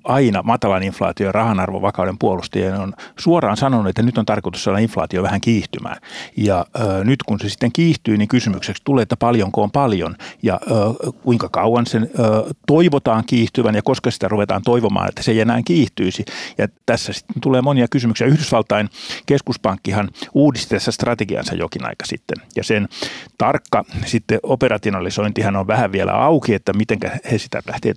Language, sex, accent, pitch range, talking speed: Finnish, male, native, 105-125 Hz, 165 wpm